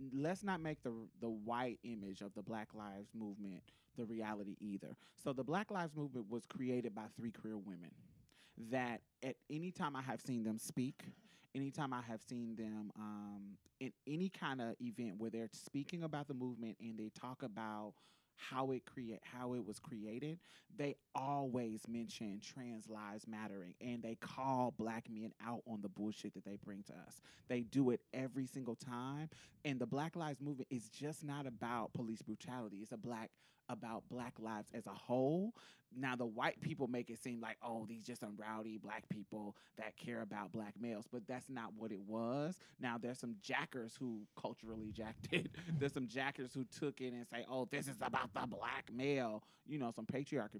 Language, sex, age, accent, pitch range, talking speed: English, male, 30-49, American, 110-135 Hz, 195 wpm